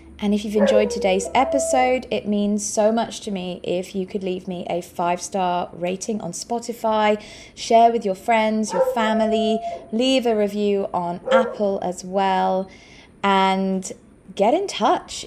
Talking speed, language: 155 wpm, English